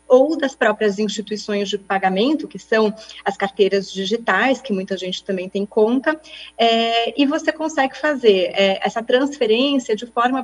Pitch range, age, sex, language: 205-255 Hz, 30-49, female, Portuguese